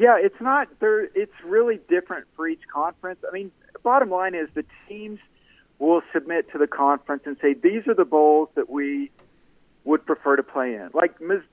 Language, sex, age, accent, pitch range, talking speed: English, male, 50-69, American, 145-210 Hz, 195 wpm